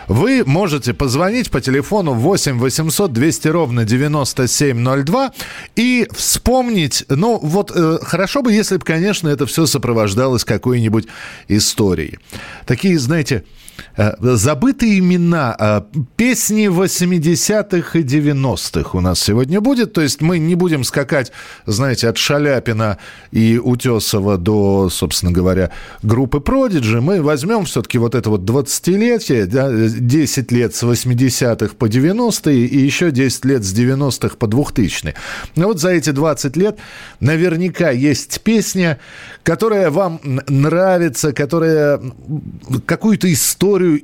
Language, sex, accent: Russian, male, native